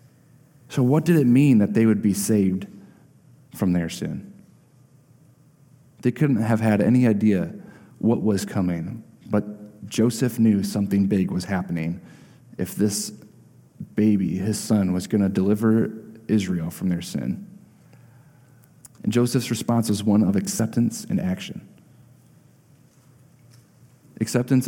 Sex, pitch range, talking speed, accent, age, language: male, 100-130 Hz, 125 wpm, American, 30-49, English